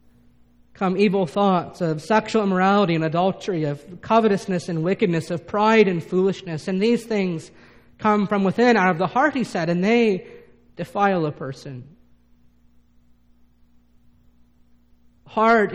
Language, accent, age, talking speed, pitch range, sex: English, American, 40-59, 130 wpm, 160-225 Hz, male